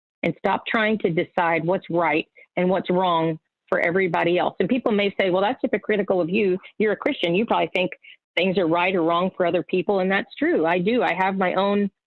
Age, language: 40-59, English